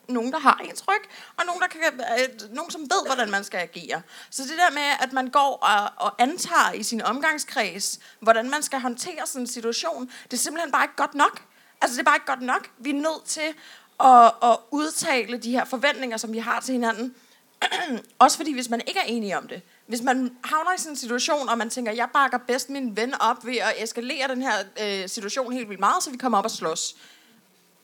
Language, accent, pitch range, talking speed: Danish, native, 225-295 Hz, 230 wpm